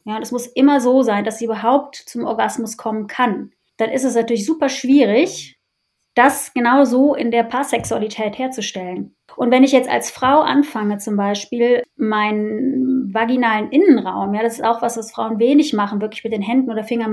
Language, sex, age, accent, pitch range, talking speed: German, female, 20-39, German, 215-255 Hz, 180 wpm